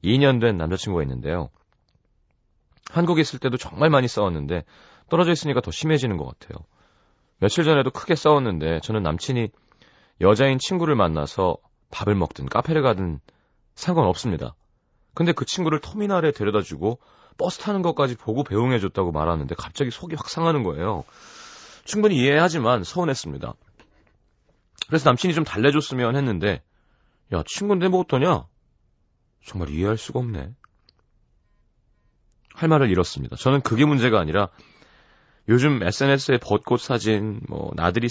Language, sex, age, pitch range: Korean, male, 30-49, 95-145 Hz